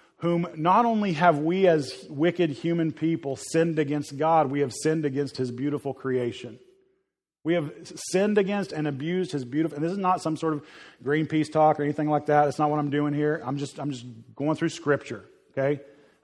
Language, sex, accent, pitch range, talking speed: English, male, American, 145-170 Hz, 205 wpm